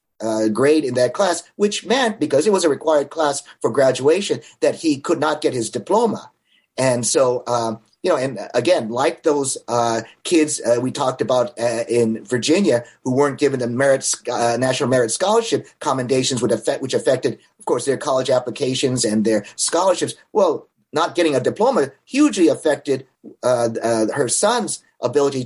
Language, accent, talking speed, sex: English, American, 175 wpm, male